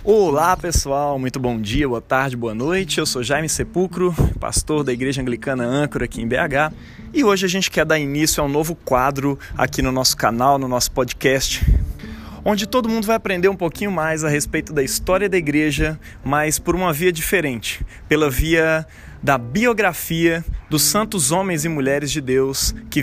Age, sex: 20-39, male